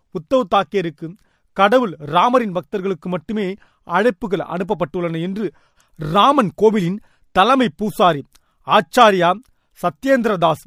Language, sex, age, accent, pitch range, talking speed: Tamil, male, 40-59, native, 180-225 Hz, 85 wpm